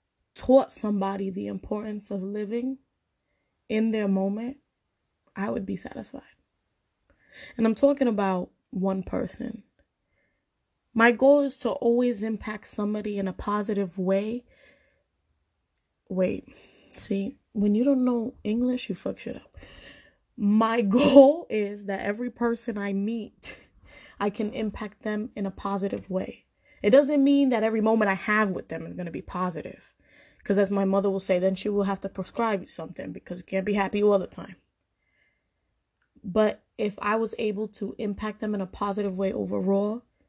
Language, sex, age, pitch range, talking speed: English, female, 20-39, 195-230 Hz, 160 wpm